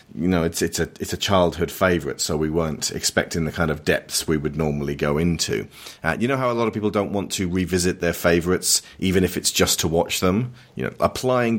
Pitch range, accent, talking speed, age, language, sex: 85-105 Hz, British, 240 wpm, 40-59, English, male